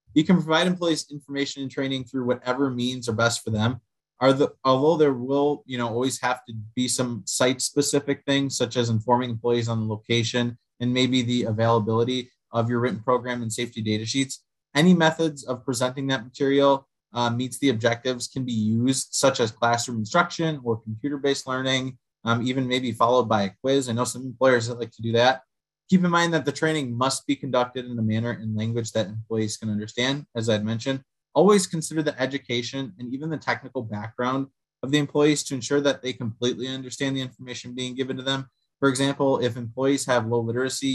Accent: American